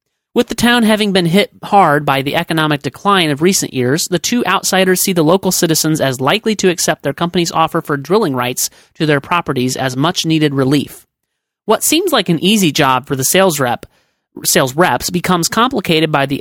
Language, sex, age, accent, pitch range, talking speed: English, male, 30-49, American, 140-195 Hz, 190 wpm